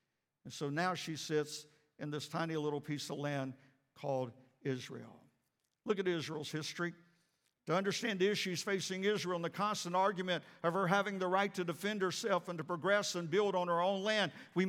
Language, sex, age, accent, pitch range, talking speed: English, male, 50-69, American, 185-235 Hz, 190 wpm